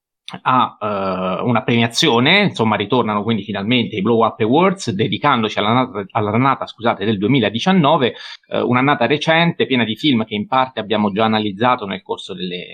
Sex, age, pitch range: male, 30-49, 100-125 Hz